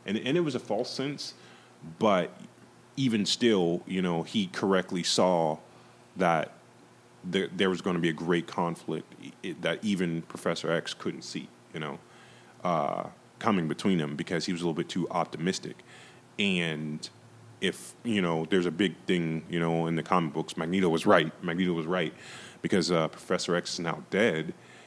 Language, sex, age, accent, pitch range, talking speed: English, male, 30-49, American, 80-95 Hz, 175 wpm